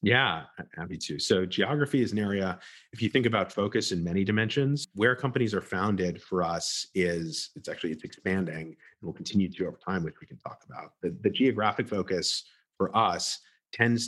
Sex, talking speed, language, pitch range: male, 190 wpm, English, 90-115 Hz